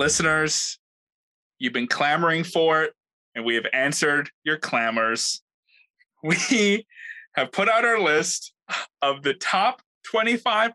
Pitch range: 145-230 Hz